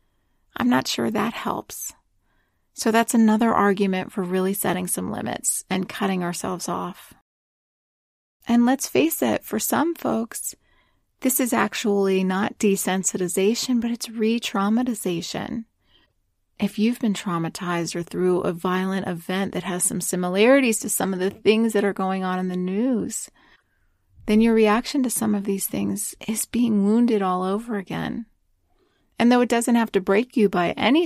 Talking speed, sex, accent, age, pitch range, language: 160 wpm, female, American, 30-49, 185-235 Hz, English